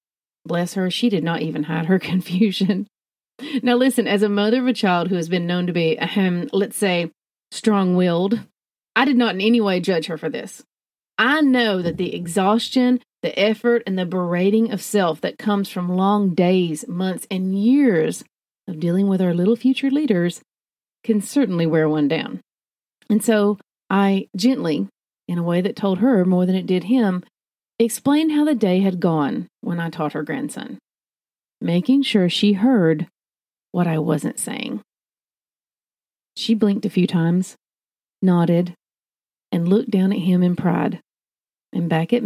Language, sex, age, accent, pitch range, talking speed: English, female, 40-59, American, 175-225 Hz, 170 wpm